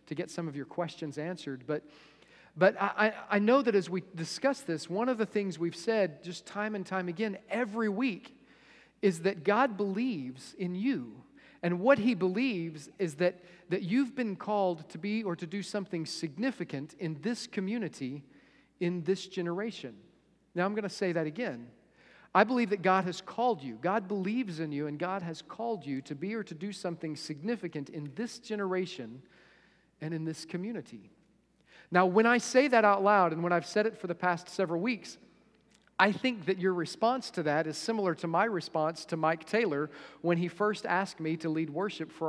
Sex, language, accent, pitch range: male, English, American, 165-210 Hz